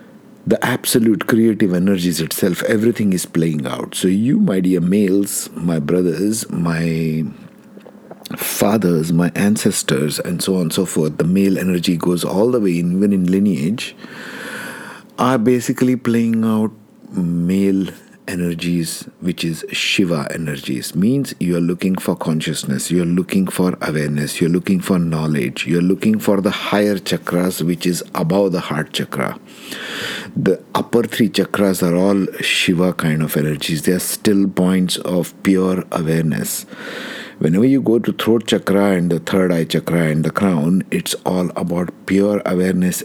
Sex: male